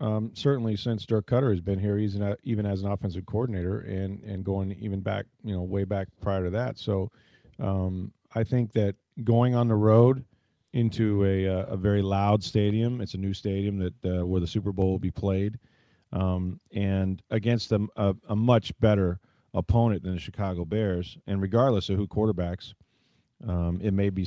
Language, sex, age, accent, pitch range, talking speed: English, male, 40-59, American, 95-115 Hz, 190 wpm